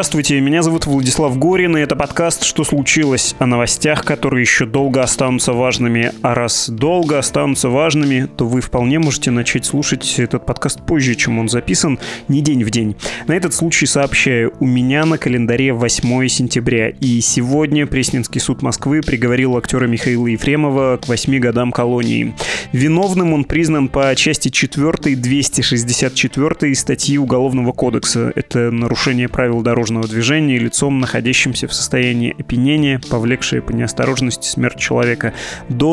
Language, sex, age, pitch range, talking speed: Russian, male, 20-39, 120-145 Hz, 145 wpm